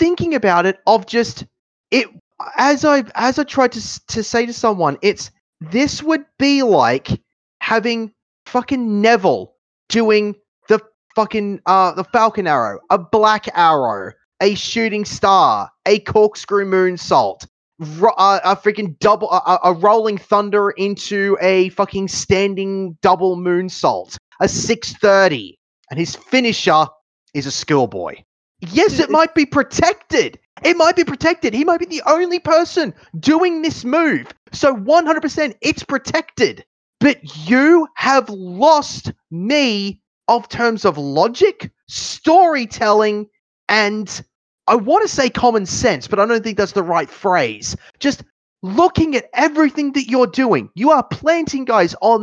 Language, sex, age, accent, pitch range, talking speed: English, male, 20-39, Australian, 195-280 Hz, 140 wpm